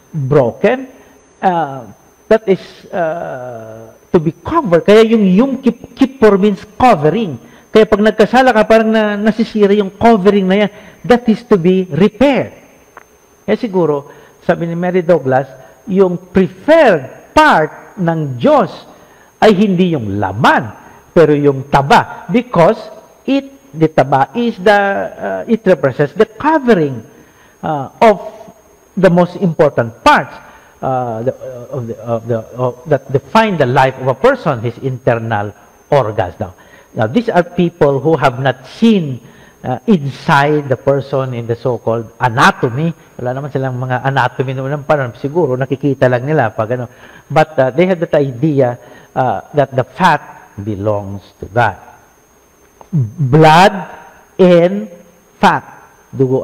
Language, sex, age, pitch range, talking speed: Filipino, male, 50-69, 130-205 Hz, 135 wpm